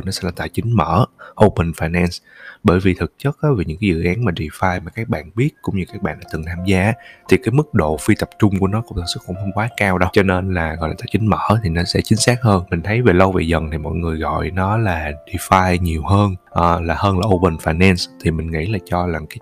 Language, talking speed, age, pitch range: Vietnamese, 275 wpm, 20-39, 85-105 Hz